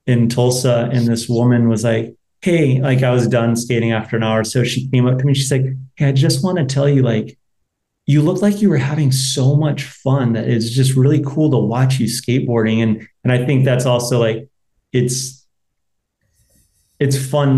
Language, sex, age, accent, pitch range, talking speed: English, male, 30-49, American, 115-135 Hz, 205 wpm